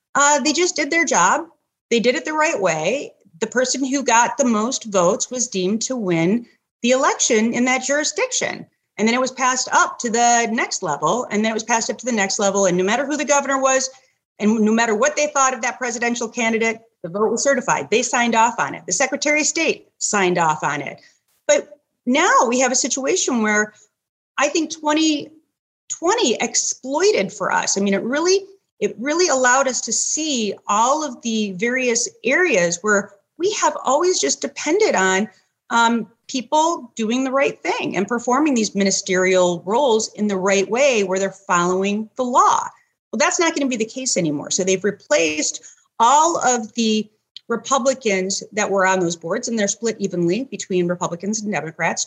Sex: female